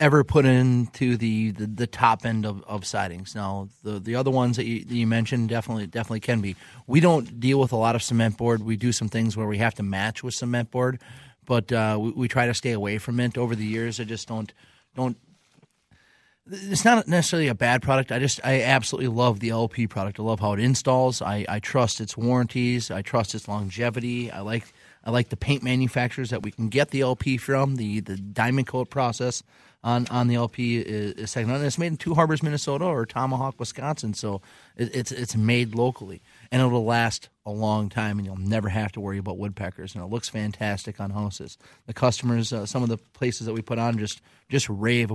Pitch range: 110-130 Hz